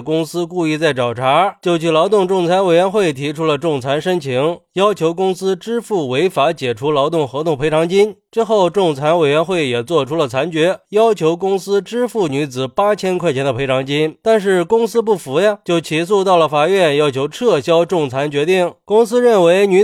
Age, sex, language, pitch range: 20-39, male, Chinese, 150-200 Hz